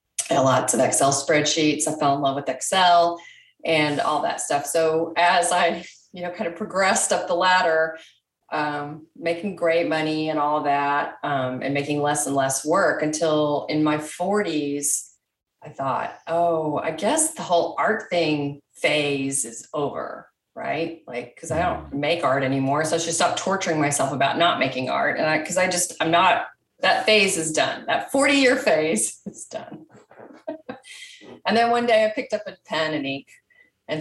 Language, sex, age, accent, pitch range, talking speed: English, female, 30-49, American, 140-175 Hz, 185 wpm